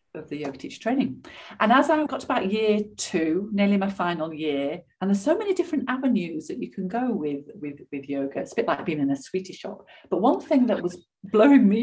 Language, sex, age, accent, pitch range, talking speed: English, female, 40-59, British, 175-260 Hz, 240 wpm